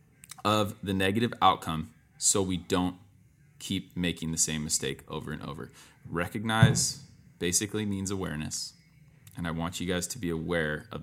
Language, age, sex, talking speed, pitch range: English, 20-39, male, 150 wpm, 90-125 Hz